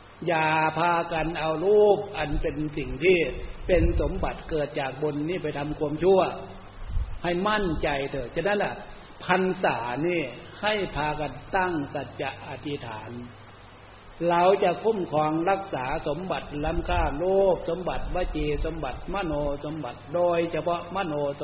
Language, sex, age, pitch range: Thai, male, 60-79, 135-175 Hz